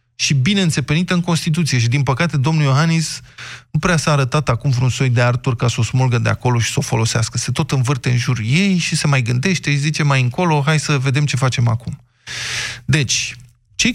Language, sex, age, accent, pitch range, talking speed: Romanian, male, 20-39, native, 125-165 Hz, 215 wpm